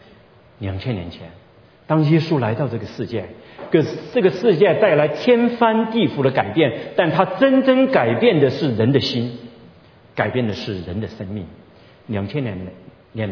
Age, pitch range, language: 50-69, 110-155 Hz, Chinese